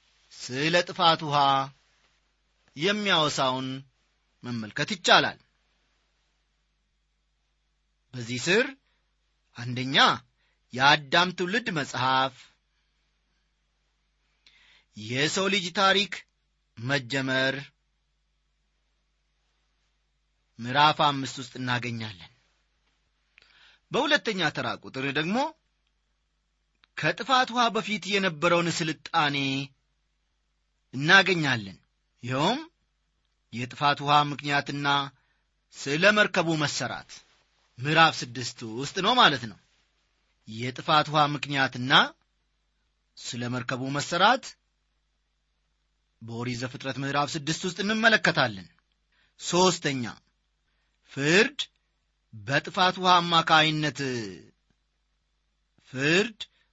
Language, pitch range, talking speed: Amharic, 125-170 Hz, 60 wpm